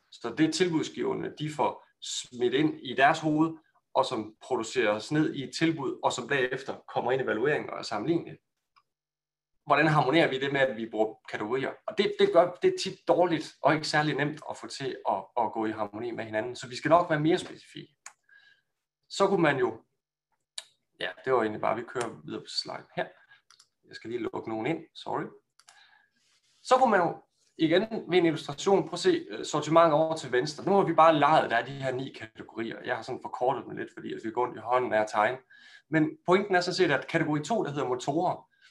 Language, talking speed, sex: Danish, 215 wpm, male